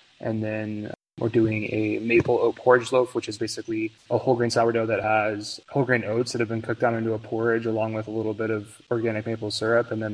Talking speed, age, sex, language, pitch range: 235 wpm, 20-39, male, English, 105-115 Hz